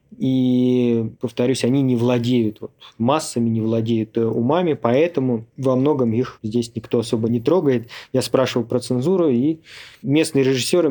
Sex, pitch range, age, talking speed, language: male, 115-130 Hz, 20-39, 145 wpm, Russian